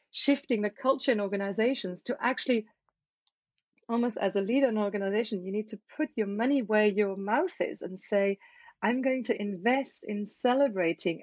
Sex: female